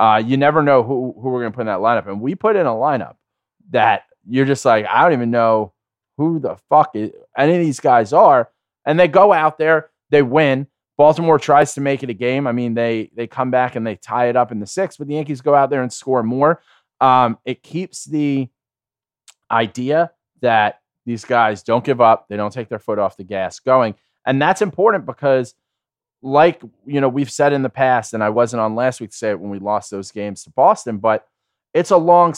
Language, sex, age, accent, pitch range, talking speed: English, male, 20-39, American, 115-145 Hz, 230 wpm